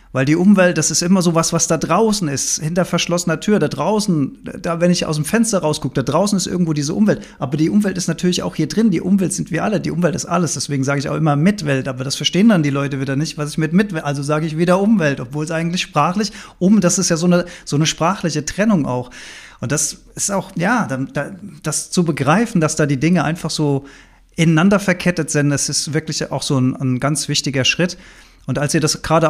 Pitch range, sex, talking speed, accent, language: 145-180 Hz, male, 240 wpm, German, German